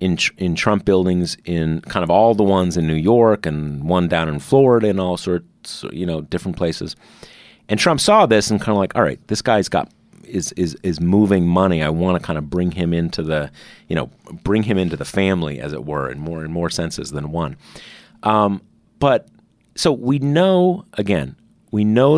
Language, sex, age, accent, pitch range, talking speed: English, male, 30-49, American, 80-105 Hz, 210 wpm